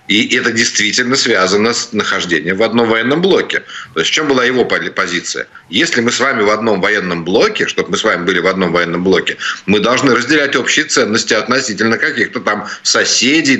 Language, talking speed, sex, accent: Ukrainian, 190 wpm, male, native